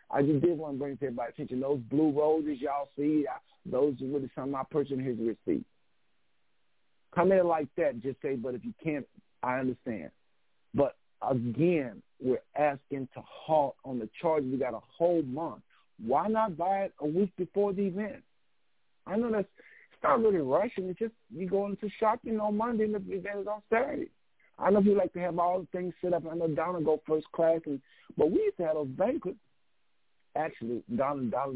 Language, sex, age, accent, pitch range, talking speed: English, male, 50-69, American, 135-205 Hz, 215 wpm